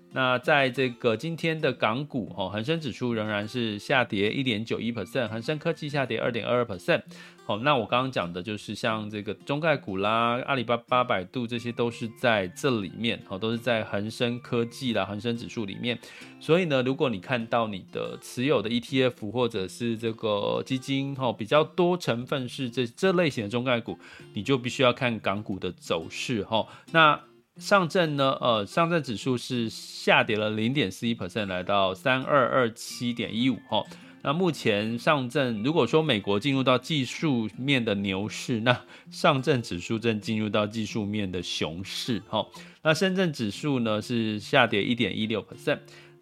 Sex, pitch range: male, 110-140 Hz